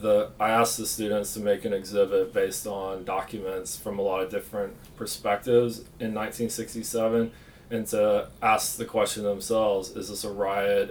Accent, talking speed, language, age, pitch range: American, 160 wpm, English, 30-49, 100-135 Hz